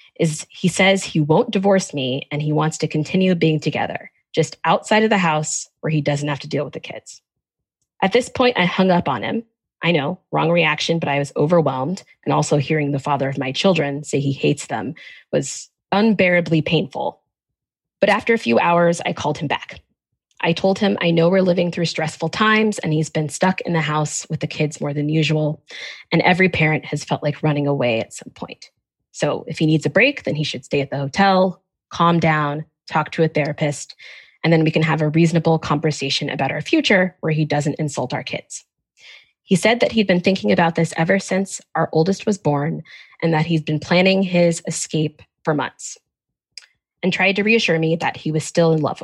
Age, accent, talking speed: 20-39, American, 210 wpm